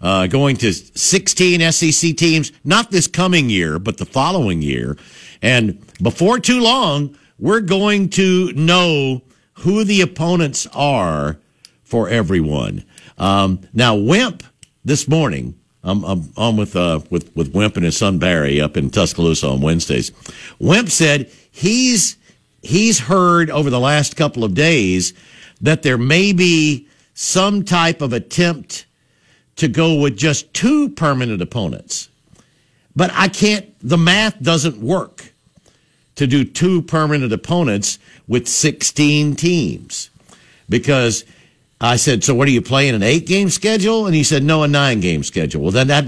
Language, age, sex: English, 60-79, male